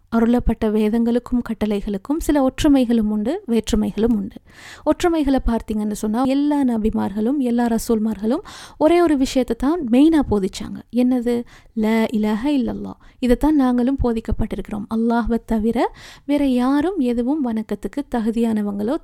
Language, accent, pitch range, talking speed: English, Indian, 220-275 Hz, 135 wpm